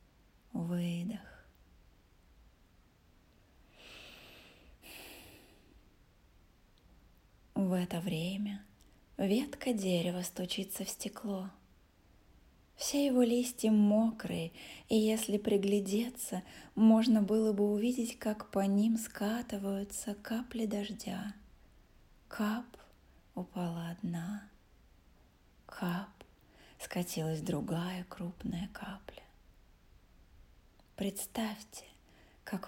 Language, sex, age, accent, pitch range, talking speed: Russian, female, 20-39, native, 175-215 Hz, 65 wpm